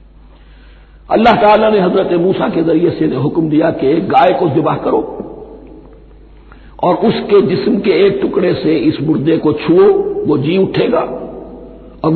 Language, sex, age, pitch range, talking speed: Hindi, male, 60-79, 155-210 Hz, 140 wpm